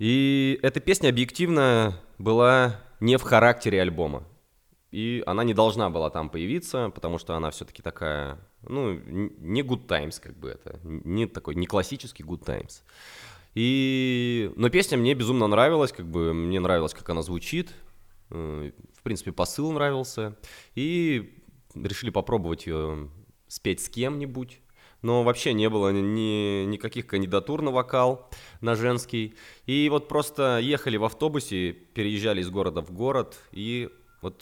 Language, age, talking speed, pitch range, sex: Russian, 20-39, 140 wpm, 95-130 Hz, male